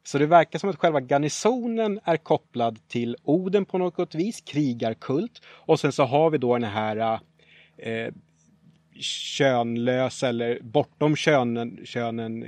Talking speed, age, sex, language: 140 wpm, 30-49, male, Swedish